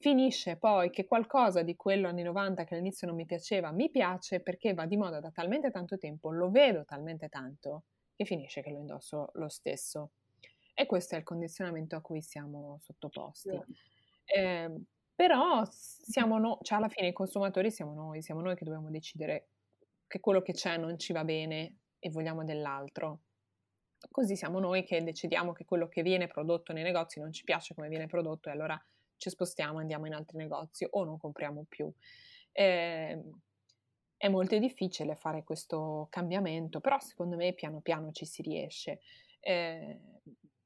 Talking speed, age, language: 170 wpm, 20-39, Italian